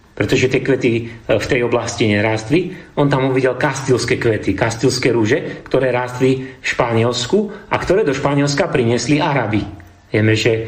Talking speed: 145 wpm